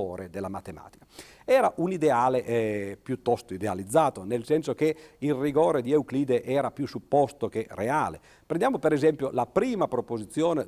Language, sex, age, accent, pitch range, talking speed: Italian, male, 50-69, native, 110-145 Hz, 145 wpm